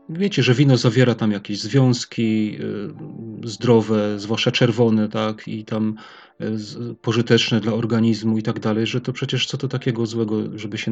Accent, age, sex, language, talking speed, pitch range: native, 30-49, male, Polish, 155 wpm, 110-140 Hz